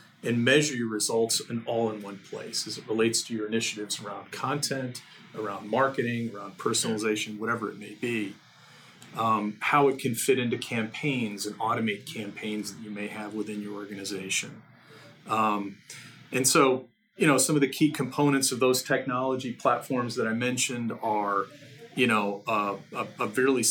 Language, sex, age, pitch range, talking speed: English, male, 40-59, 105-130 Hz, 165 wpm